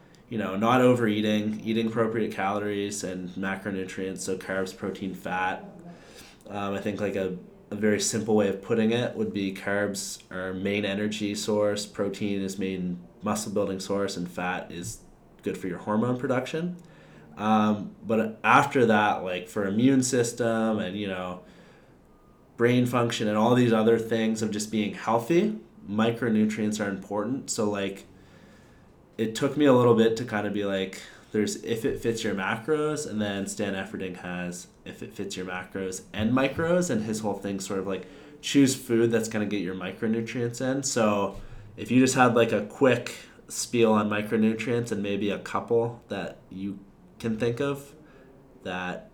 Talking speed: 170 wpm